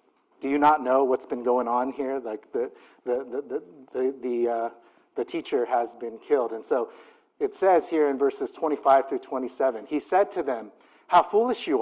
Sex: male